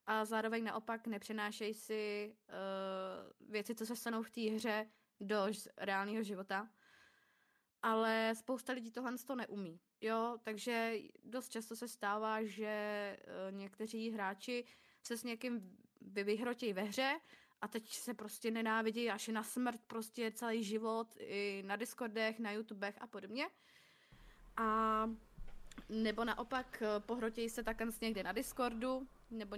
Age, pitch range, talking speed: 20-39, 210-235 Hz, 130 wpm